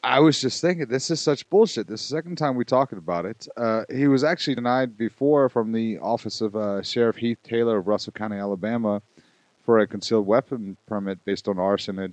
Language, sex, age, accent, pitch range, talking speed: English, male, 30-49, American, 100-120 Hz, 220 wpm